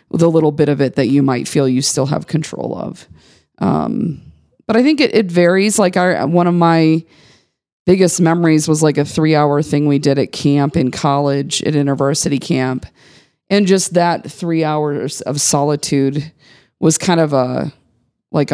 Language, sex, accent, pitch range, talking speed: English, female, American, 140-165 Hz, 175 wpm